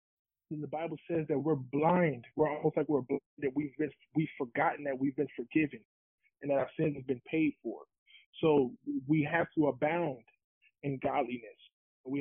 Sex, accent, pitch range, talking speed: male, American, 130-155 Hz, 180 wpm